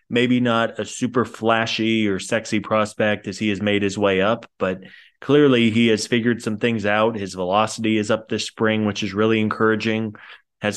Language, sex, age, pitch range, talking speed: English, male, 20-39, 105-120 Hz, 190 wpm